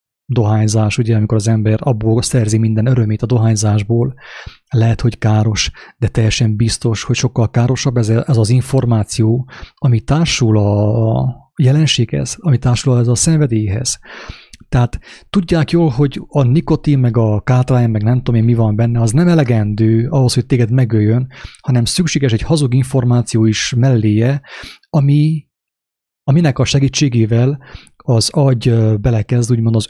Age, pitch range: 30-49, 115-135 Hz